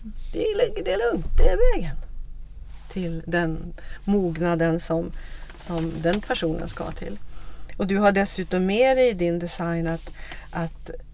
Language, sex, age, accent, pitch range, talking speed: English, female, 40-59, Swedish, 165-225 Hz, 155 wpm